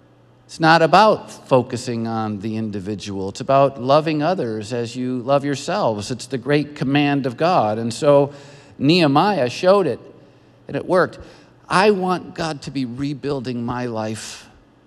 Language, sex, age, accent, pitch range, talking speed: English, male, 50-69, American, 135-190 Hz, 150 wpm